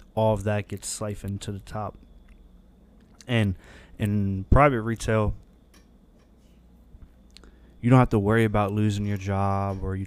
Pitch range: 95-110 Hz